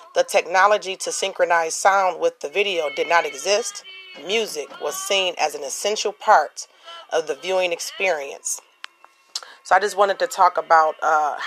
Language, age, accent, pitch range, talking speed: English, 40-59, American, 170-255 Hz, 155 wpm